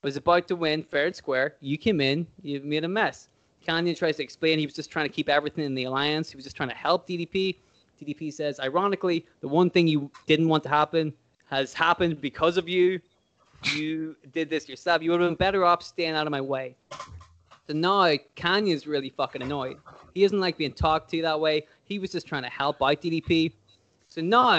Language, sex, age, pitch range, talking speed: English, male, 20-39, 140-170 Hz, 220 wpm